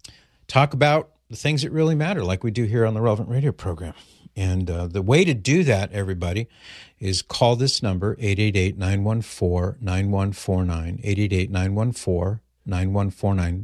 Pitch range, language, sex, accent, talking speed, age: 95-115 Hz, English, male, American, 130 wpm, 50-69